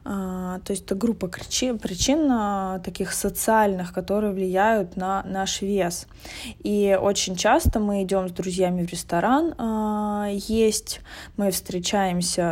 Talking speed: 120 wpm